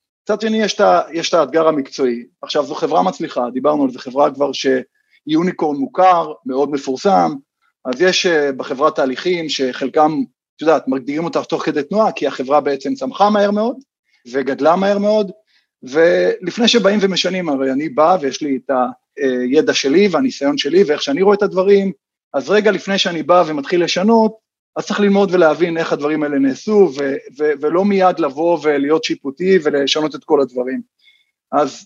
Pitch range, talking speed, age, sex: 140-200 Hz, 160 wpm, 30-49, male